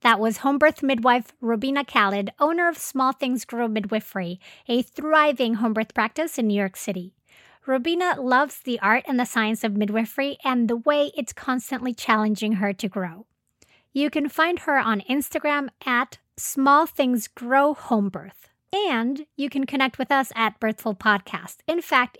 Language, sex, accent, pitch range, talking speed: English, female, American, 220-285 Hz, 155 wpm